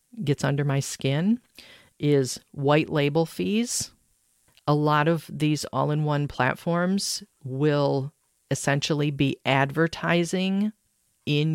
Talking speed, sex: 100 wpm, female